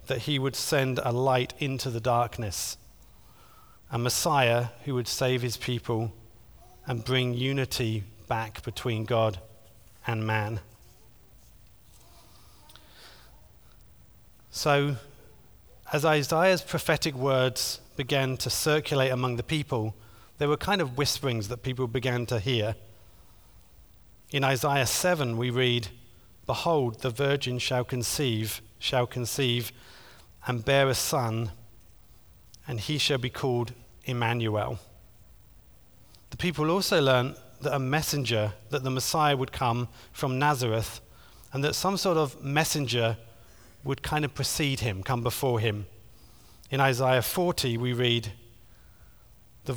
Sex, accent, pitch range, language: male, British, 110-135 Hz, English